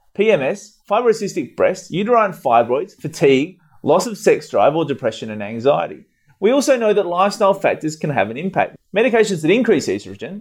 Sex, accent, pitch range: male, Australian, 140-205 Hz